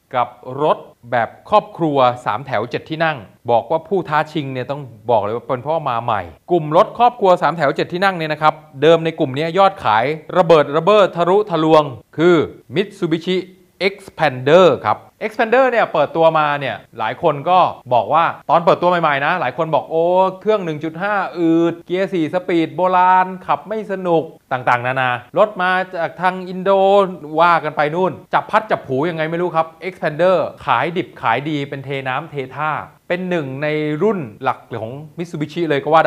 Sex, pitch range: male, 145-185 Hz